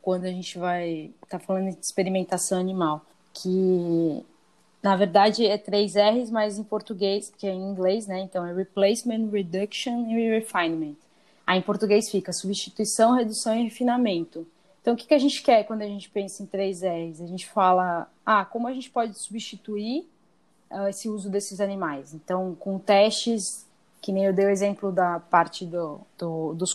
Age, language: 20-39, Portuguese